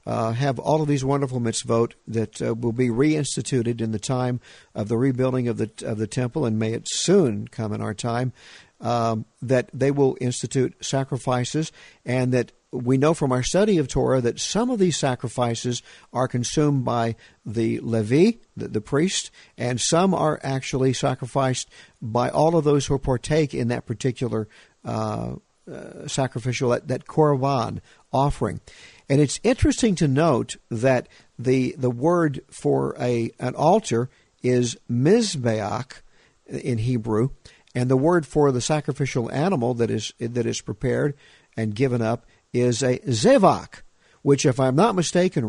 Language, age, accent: English, 50-69, American